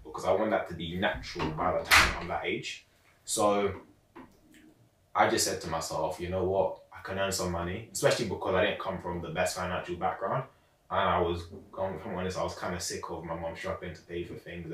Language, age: English, 20-39